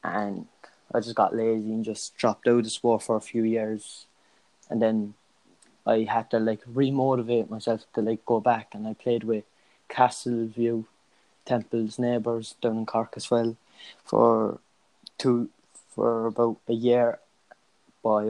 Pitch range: 110-120 Hz